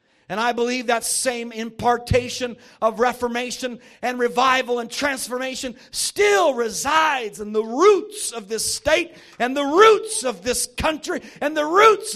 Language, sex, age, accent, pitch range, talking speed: English, male, 50-69, American, 250-345 Hz, 145 wpm